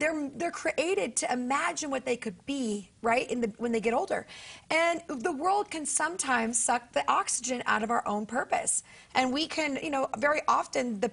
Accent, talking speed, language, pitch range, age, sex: American, 200 wpm, English, 225-280 Hz, 30-49, female